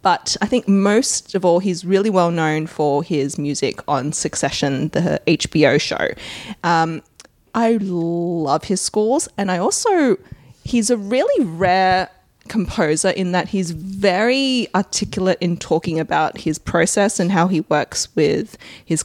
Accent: Australian